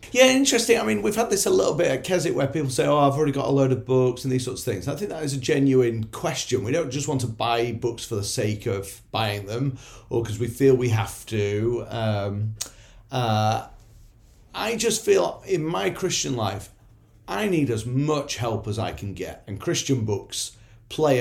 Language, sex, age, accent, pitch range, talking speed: English, male, 40-59, British, 110-145 Hz, 220 wpm